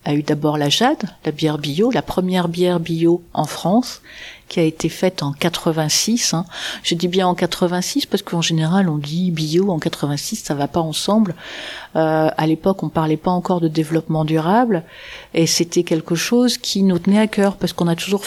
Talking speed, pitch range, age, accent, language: 200 wpm, 165-205 Hz, 50-69, French, French